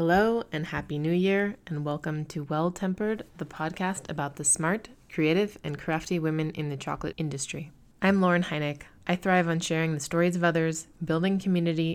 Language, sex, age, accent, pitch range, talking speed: English, female, 20-39, American, 155-175 Hz, 175 wpm